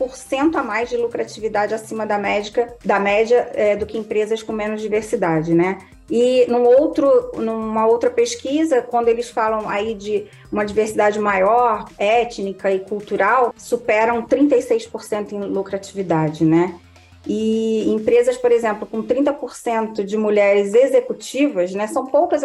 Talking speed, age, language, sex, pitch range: 125 wpm, 20-39, Portuguese, female, 200-250 Hz